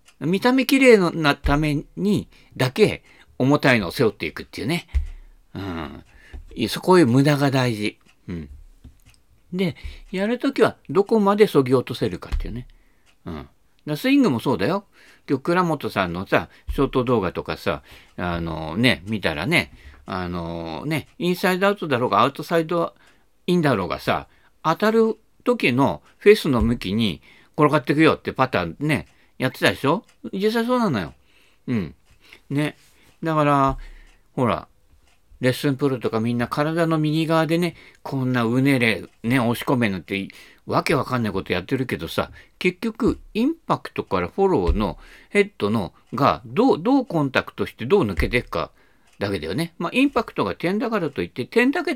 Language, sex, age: Japanese, male, 60-79